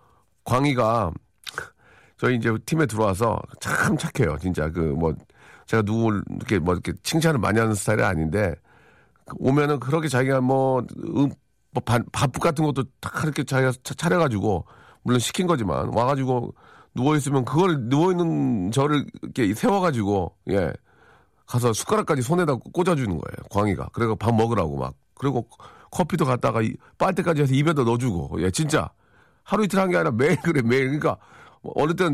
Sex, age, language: male, 40-59, Korean